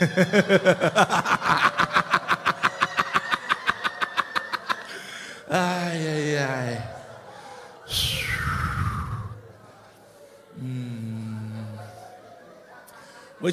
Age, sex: 50-69, male